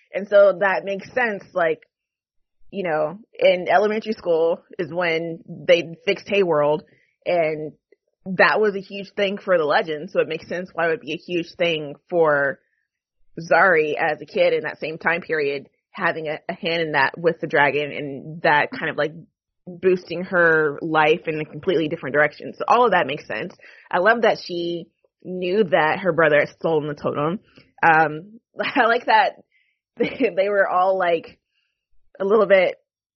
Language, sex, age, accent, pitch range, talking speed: English, female, 20-39, American, 165-205 Hz, 175 wpm